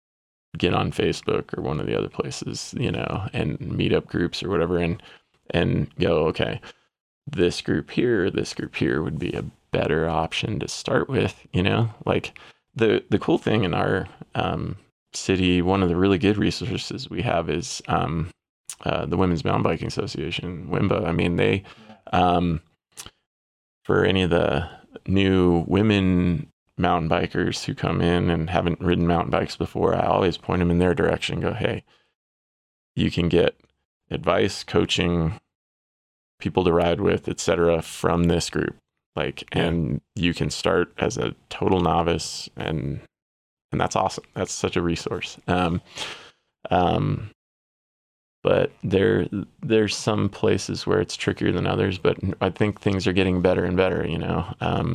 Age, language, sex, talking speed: 20-39, English, male, 160 wpm